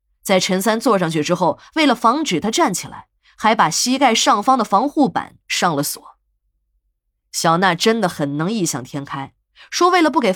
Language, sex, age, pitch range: Chinese, female, 20-39, 165-270 Hz